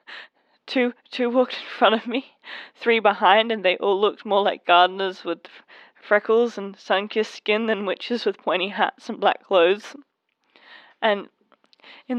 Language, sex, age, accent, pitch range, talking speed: English, female, 20-39, Australian, 185-240 Hz, 160 wpm